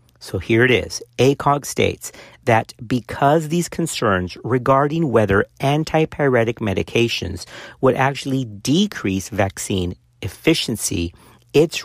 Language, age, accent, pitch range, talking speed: English, 50-69, American, 105-150 Hz, 100 wpm